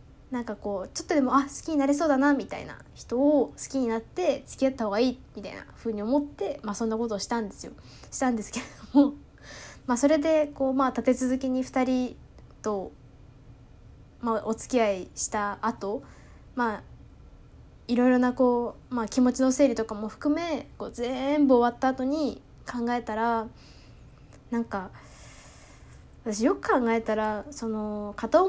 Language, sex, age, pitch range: Japanese, female, 20-39, 220-280 Hz